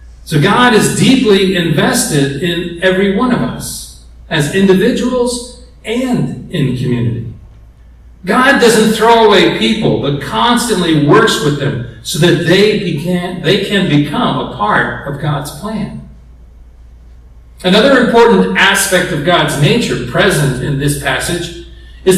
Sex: male